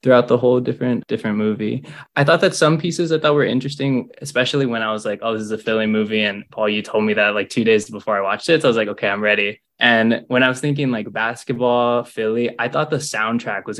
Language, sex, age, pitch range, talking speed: English, male, 20-39, 105-135 Hz, 255 wpm